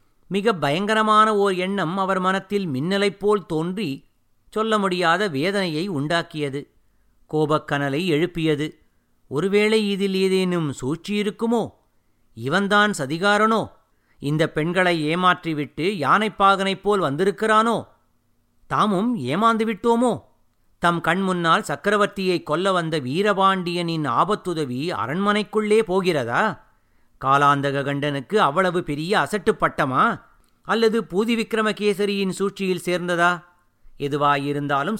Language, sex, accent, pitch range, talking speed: Tamil, male, native, 140-205 Hz, 80 wpm